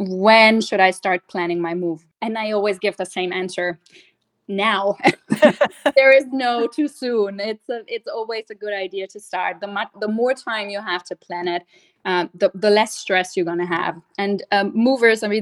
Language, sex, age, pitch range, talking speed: English, female, 20-39, 180-215 Hz, 205 wpm